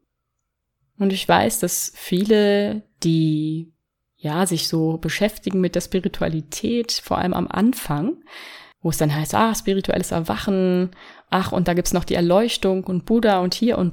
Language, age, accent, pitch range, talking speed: German, 20-39, German, 165-200 Hz, 155 wpm